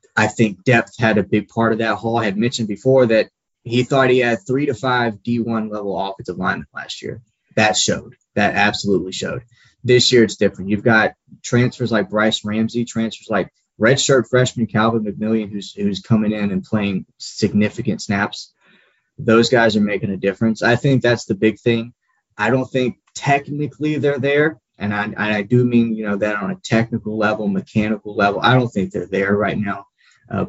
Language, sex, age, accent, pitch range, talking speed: English, male, 20-39, American, 105-120 Hz, 195 wpm